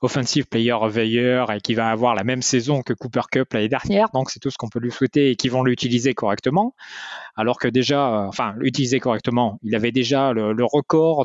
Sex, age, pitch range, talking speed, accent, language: male, 20-39, 110-130 Hz, 220 wpm, French, French